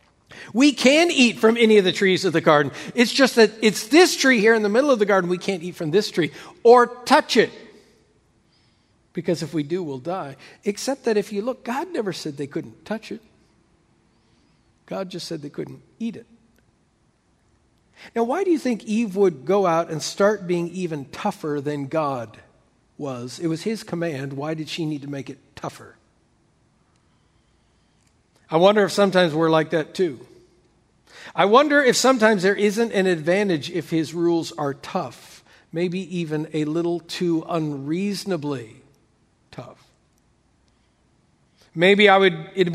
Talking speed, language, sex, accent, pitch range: 165 wpm, English, male, American, 150-205 Hz